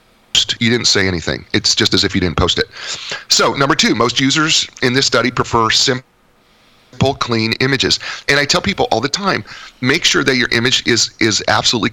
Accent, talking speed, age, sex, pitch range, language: American, 195 wpm, 30-49, male, 95-120 Hz, English